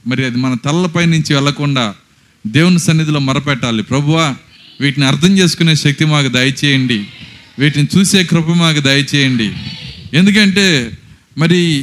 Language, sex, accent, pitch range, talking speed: Telugu, male, native, 140-185 Hz, 115 wpm